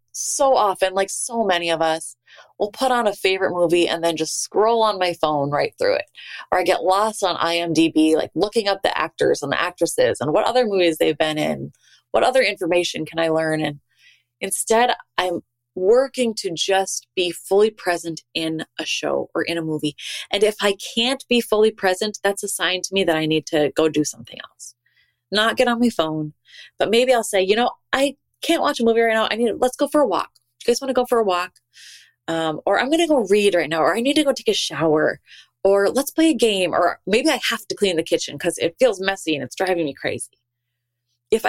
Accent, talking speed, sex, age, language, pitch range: American, 230 wpm, female, 20-39, English, 160-230 Hz